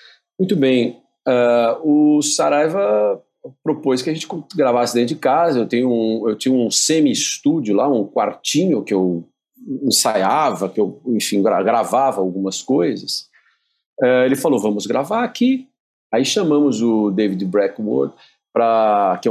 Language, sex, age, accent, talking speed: Portuguese, male, 50-69, Brazilian, 130 wpm